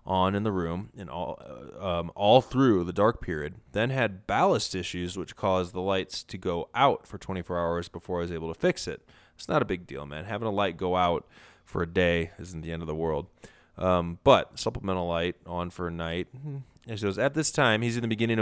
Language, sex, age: English, male, 20-39